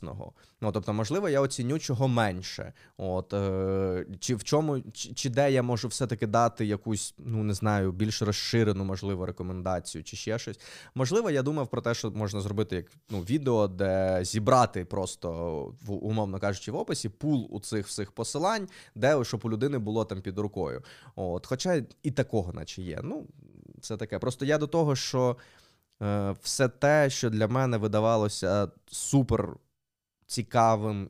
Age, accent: 20-39, native